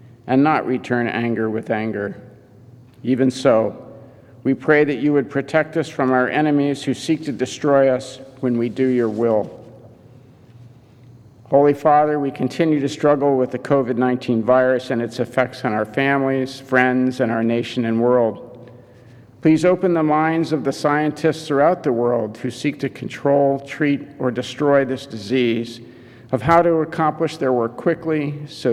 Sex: male